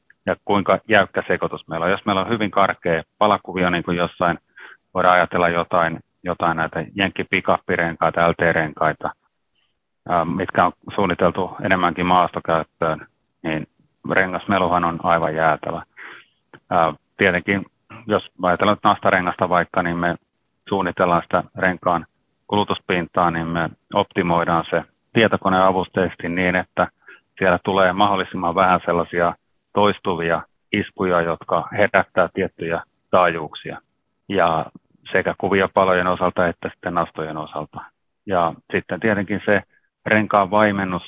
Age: 30-49